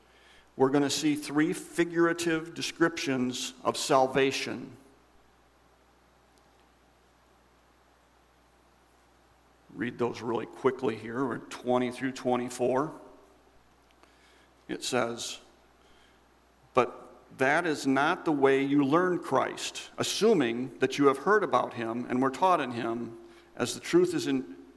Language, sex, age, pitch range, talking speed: English, male, 50-69, 130-175 Hz, 110 wpm